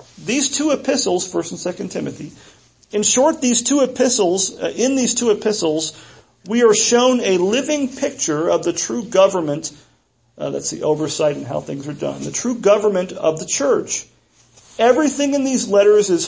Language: English